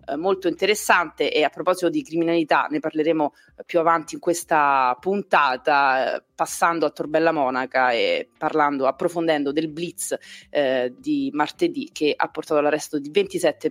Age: 30-49